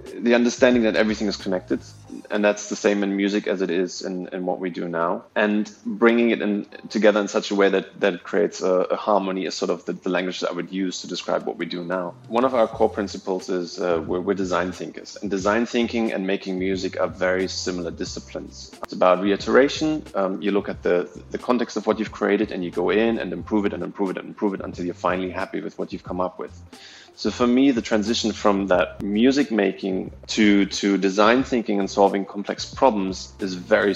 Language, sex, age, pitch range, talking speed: English, male, 30-49, 95-115 Hz, 230 wpm